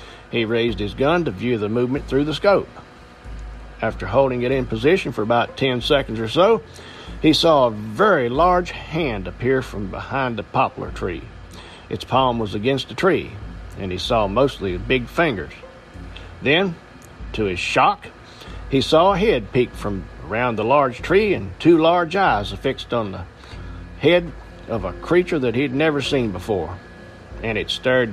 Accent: American